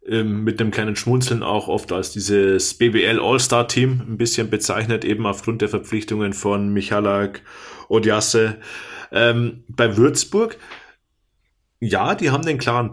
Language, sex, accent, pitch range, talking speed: German, male, German, 110-130 Hz, 135 wpm